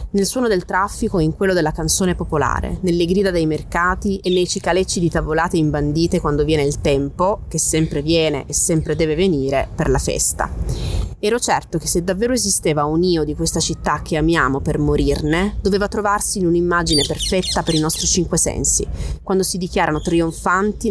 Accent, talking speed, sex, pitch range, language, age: native, 180 wpm, female, 155-185 Hz, Italian, 20-39